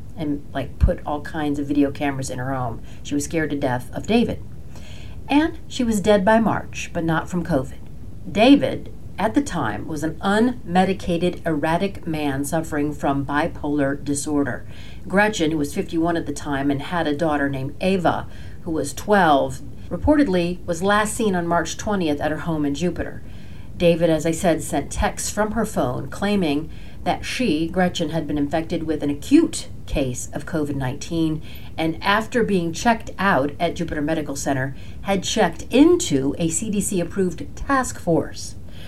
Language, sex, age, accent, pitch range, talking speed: English, female, 40-59, American, 145-185 Hz, 170 wpm